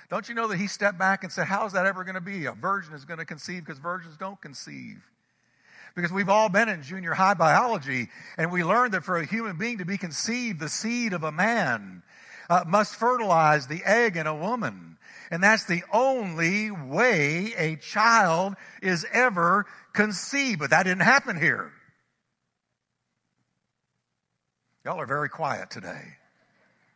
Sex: male